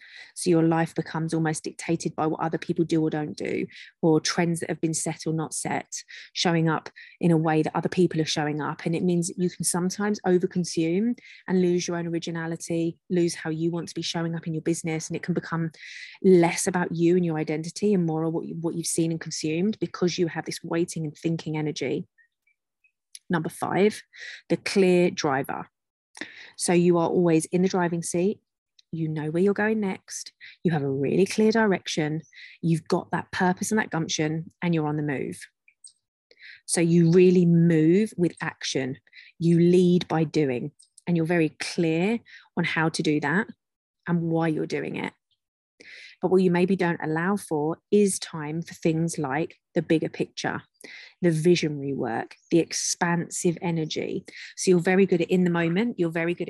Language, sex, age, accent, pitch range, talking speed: English, female, 30-49, British, 160-180 Hz, 190 wpm